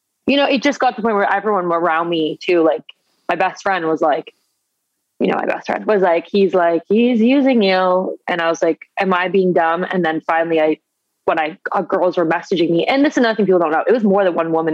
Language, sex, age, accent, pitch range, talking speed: English, female, 20-39, American, 170-215 Hz, 255 wpm